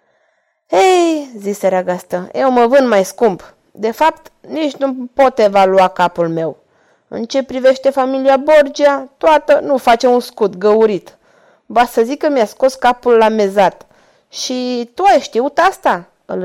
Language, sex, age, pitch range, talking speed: Romanian, female, 20-39, 200-290 Hz, 160 wpm